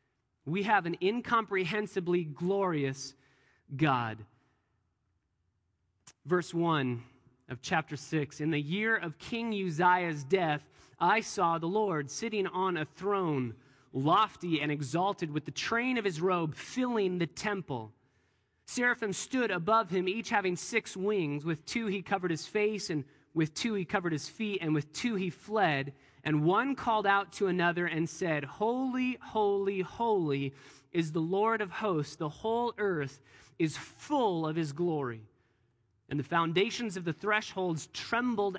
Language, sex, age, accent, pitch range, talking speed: English, male, 30-49, American, 140-195 Hz, 150 wpm